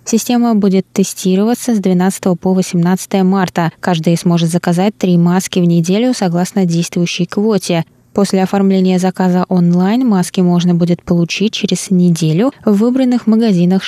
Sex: female